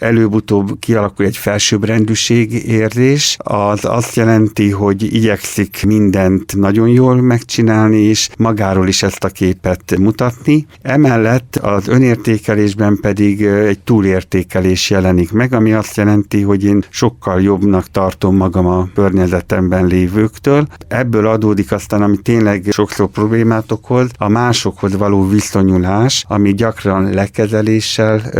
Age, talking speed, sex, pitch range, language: 60-79, 120 wpm, male, 95-110 Hz, Hungarian